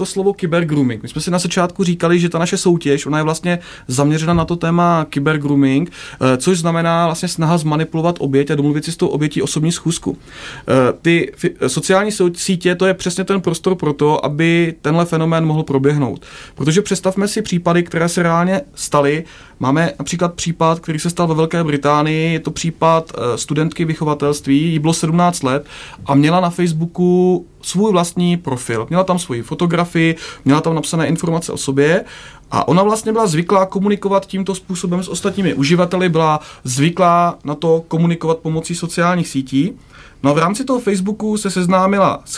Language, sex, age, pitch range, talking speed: Czech, male, 30-49, 150-180 Hz, 170 wpm